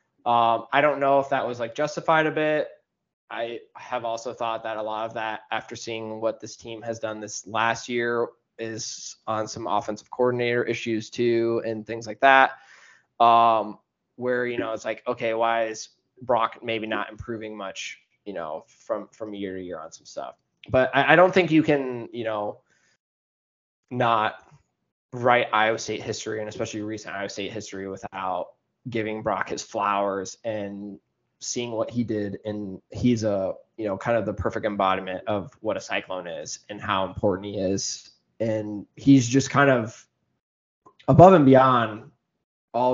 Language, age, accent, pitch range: English, 20-39, American, 110-125 Hz